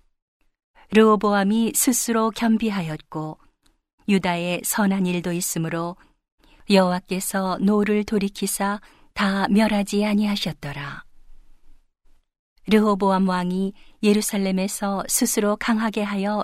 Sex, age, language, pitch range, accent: female, 40-59, Korean, 180-215 Hz, native